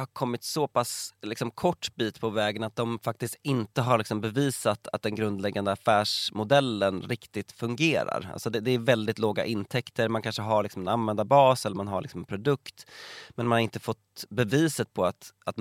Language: Swedish